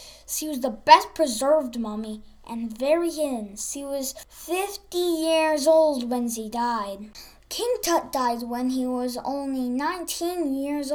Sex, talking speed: female, 145 wpm